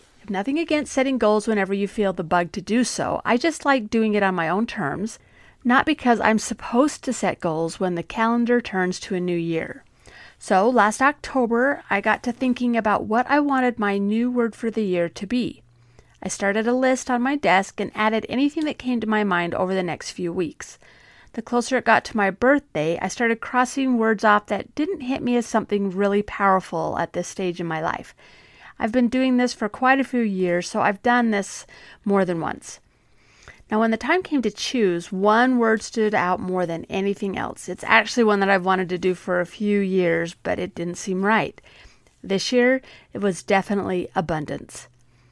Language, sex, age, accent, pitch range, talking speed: English, female, 40-59, American, 180-240 Hz, 205 wpm